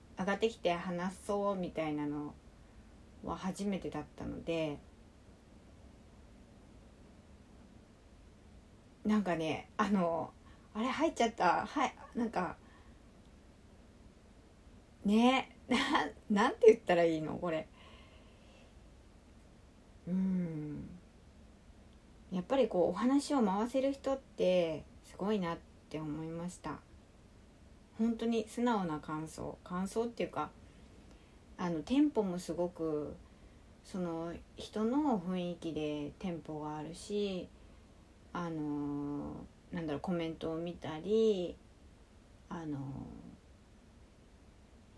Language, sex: Japanese, female